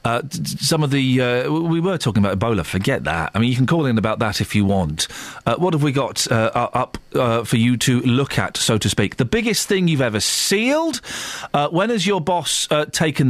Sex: male